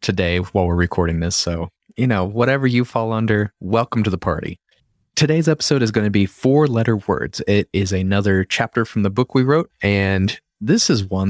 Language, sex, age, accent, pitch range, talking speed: English, male, 30-49, American, 95-115 Hz, 200 wpm